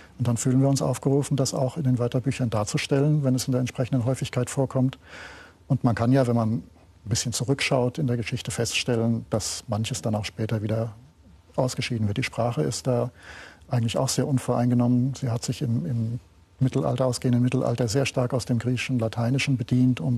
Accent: German